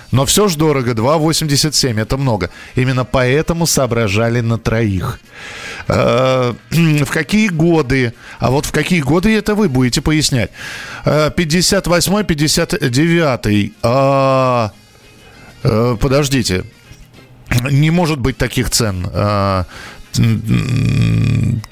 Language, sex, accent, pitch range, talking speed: Russian, male, native, 115-150 Hz, 95 wpm